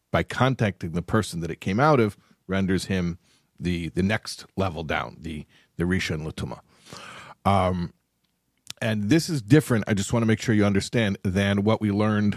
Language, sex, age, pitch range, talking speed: English, male, 50-69, 90-110 Hz, 185 wpm